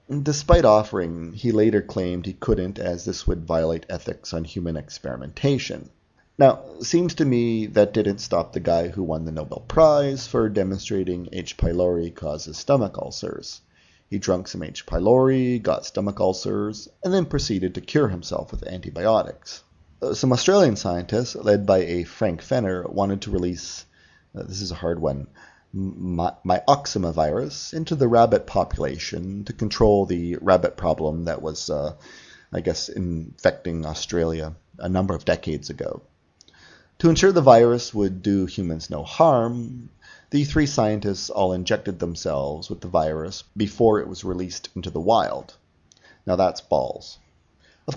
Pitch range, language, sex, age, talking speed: 85-115 Hz, English, male, 30-49, 155 wpm